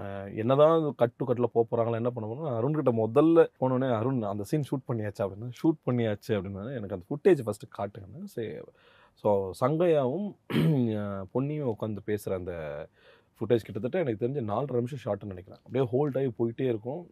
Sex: male